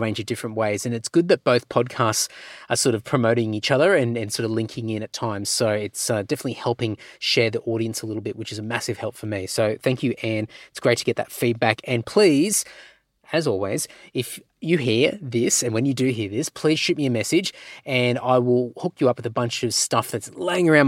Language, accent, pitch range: English, Australian, 120-155 Hz